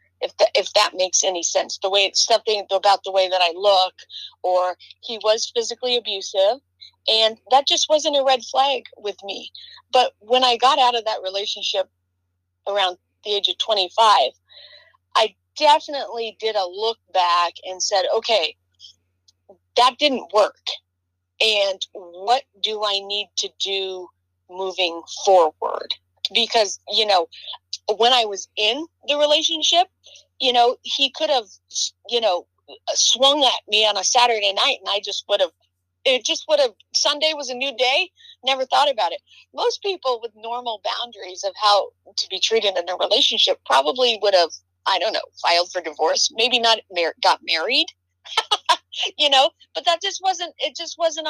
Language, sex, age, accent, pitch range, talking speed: English, female, 30-49, American, 185-270 Hz, 165 wpm